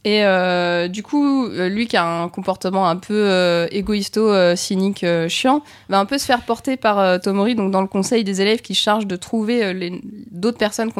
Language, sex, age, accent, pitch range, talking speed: French, female, 20-39, French, 175-220 Hz, 230 wpm